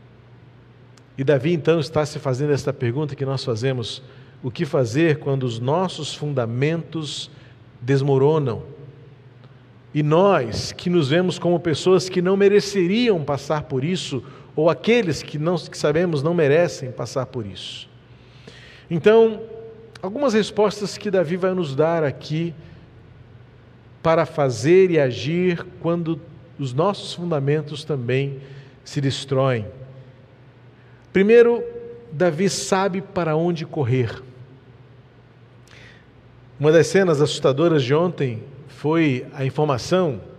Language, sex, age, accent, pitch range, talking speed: Portuguese, male, 40-59, Brazilian, 130-170 Hz, 115 wpm